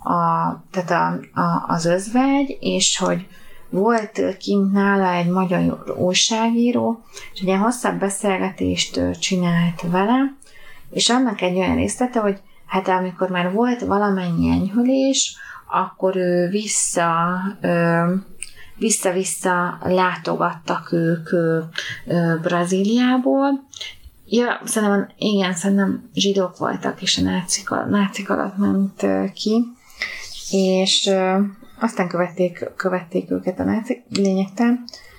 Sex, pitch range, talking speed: female, 165-205 Hz, 105 wpm